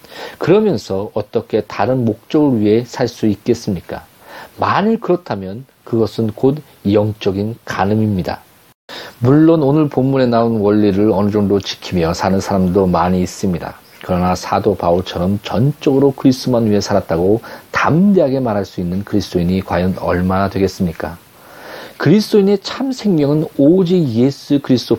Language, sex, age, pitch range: Korean, male, 40-59, 100-140 Hz